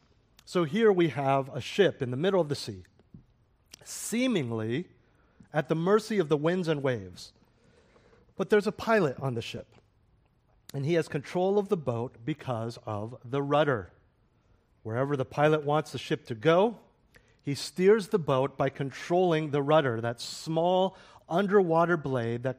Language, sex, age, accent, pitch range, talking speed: English, male, 50-69, American, 125-180 Hz, 160 wpm